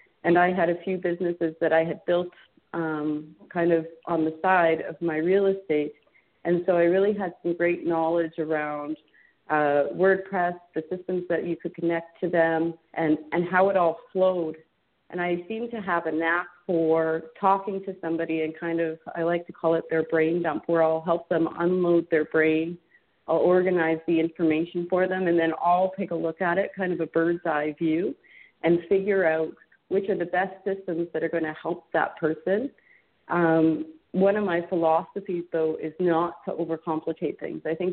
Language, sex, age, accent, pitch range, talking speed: English, female, 40-59, American, 160-180 Hz, 195 wpm